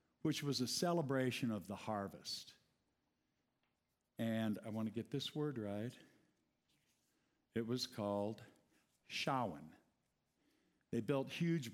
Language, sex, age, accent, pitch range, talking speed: English, male, 60-79, American, 110-145 Hz, 110 wpm